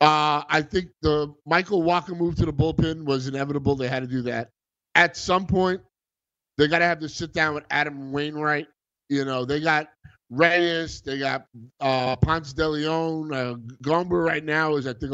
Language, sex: English, male